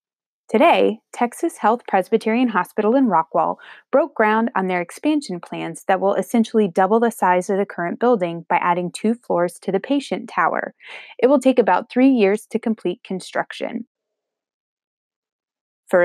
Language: English